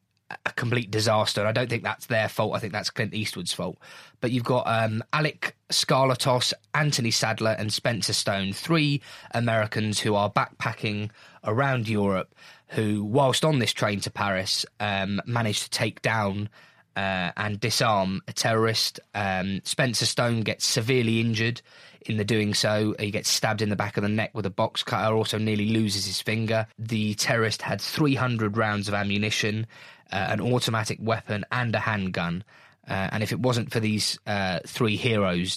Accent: British